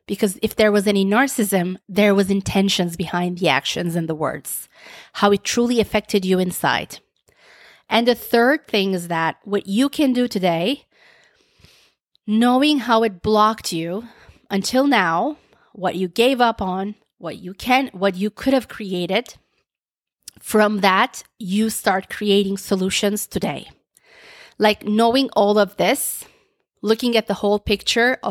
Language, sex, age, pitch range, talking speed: English, female, 30-49, 195-240 Hz, 145 wpm